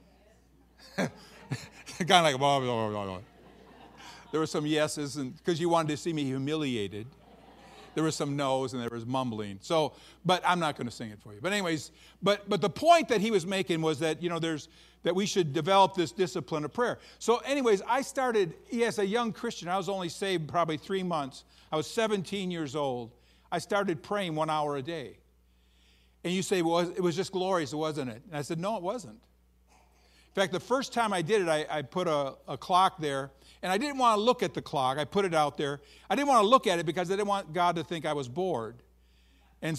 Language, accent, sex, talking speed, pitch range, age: English, American, male, 230 wpm, 140-195 Hz, 50-69